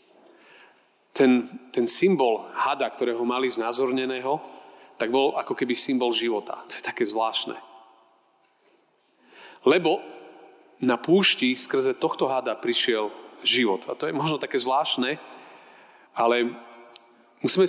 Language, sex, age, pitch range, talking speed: Slovak, male, 40-59, 125-195 Hz, 110 wpm